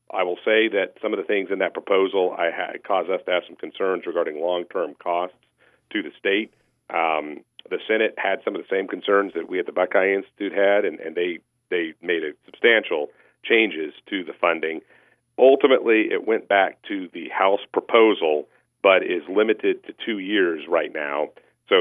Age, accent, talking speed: 40-59, American, 190 wpm